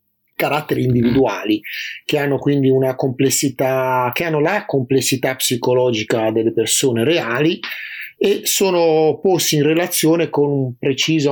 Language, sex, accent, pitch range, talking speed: Italian, male, native, 125-155 Hz, 120 wpm